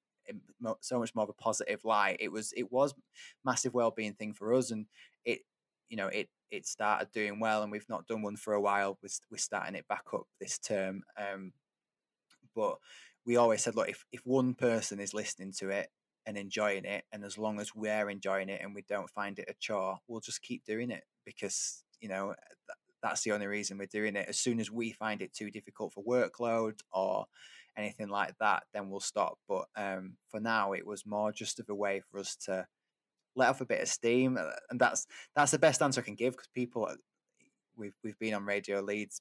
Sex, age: male, 20-39